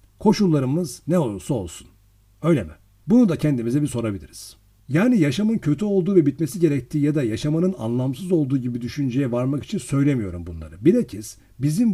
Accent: native